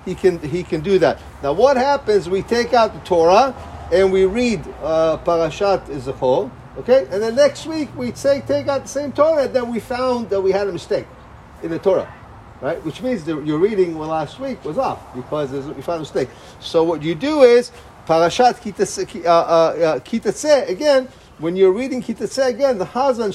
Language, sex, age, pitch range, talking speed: English, male, 40-59, 170-240 Hz, 195 wpm